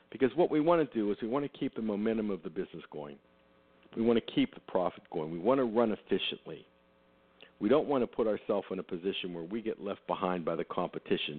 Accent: American